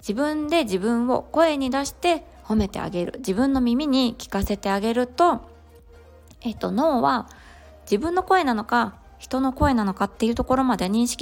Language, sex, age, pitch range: Japanese, female, 20-39, 185-255 Hz